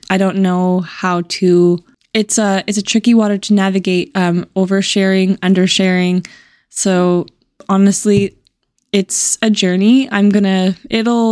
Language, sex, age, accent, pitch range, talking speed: English, female, 20-39, American, 185-215 Hz, 125 wpm